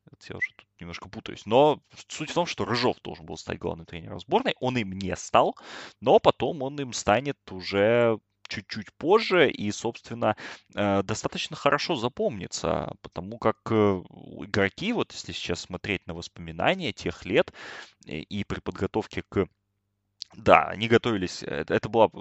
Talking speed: 145 wpm